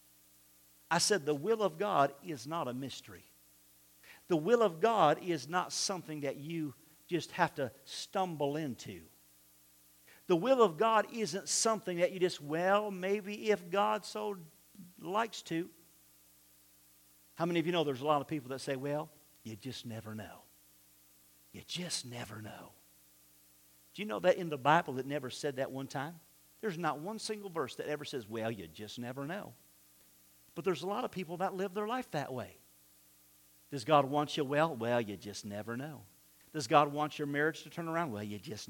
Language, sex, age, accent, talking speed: English, male, 50-69, American, 185 wpm